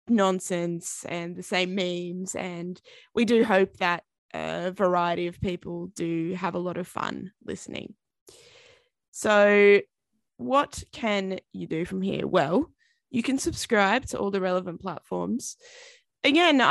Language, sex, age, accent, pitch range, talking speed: English, female, 20-39, Australian, 185-255 Hz, 135 wpm